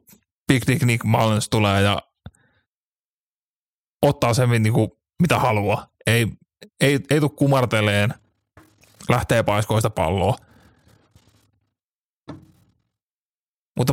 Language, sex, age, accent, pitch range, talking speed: Finnish, male, 30-49, native, 105-125 Hz, 75 wpm